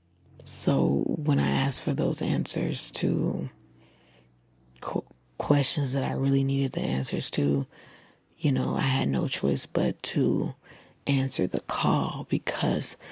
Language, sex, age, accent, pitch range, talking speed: English, female, 30-49, American, 85-145 Hz, 130 wpm